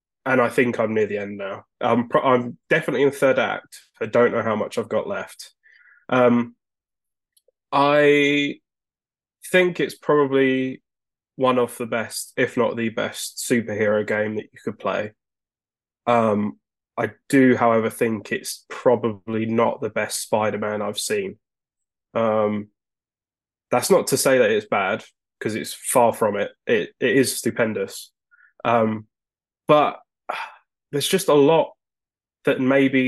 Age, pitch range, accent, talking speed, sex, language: 10-29, 110-130 Hz, British, 145 wpm, male, English